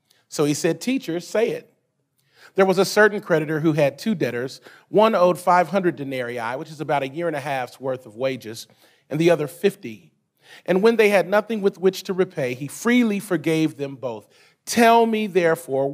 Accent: American